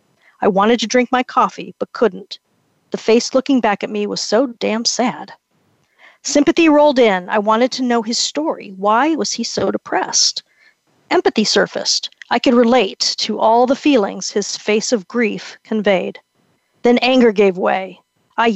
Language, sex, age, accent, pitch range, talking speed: English, female, 40-59, American, 210-255 Hz, 165 wpm